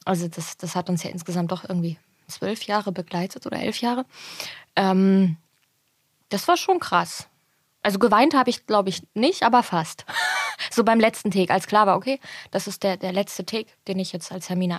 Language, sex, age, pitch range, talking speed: German, female, 20-39, 180-235 Hz, 195 wpm